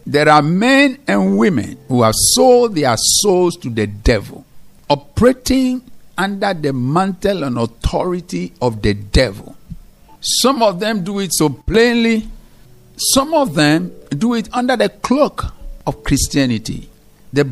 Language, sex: English, male